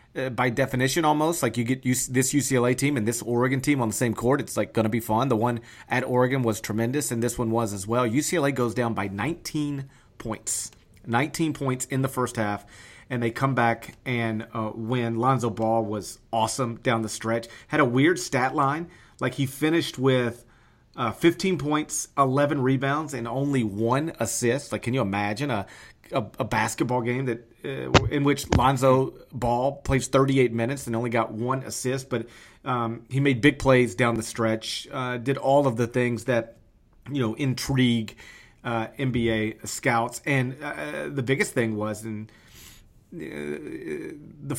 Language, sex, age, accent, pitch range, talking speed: English, male, 30-49, American, 115-135 Hz, 180 wpm